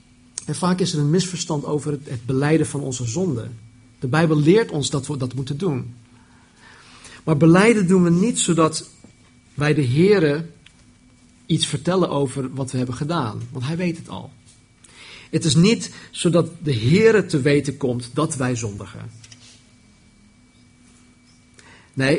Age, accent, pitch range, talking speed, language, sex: 50-69, Dutch, 120-175 Hz, 150 wpm, Dutch, male